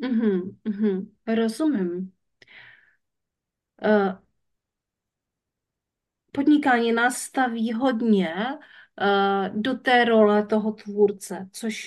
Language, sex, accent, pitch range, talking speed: Czech, female, native, 200-235 Hz, 75 wpm